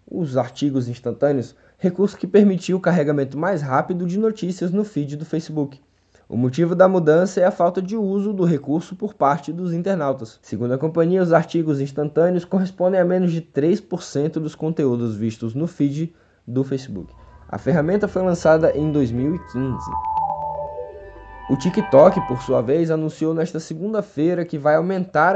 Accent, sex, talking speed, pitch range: Brazilian, male, 155 wpm, 135-180 Hz